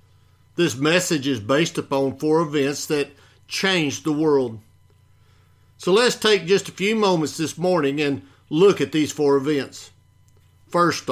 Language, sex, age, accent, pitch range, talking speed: English, male, 50-69, American, 110-165 Hz, 145 wpm